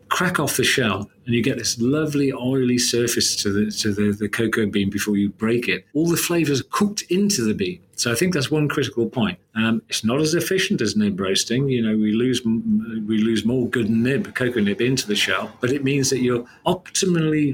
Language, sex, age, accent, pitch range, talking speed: English, male, 40-59, British, 110-140 Hz, 220 wpm